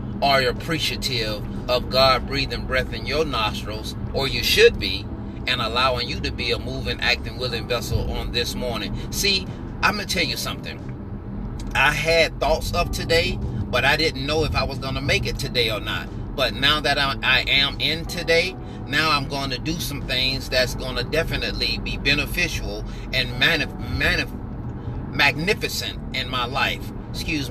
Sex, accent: male, American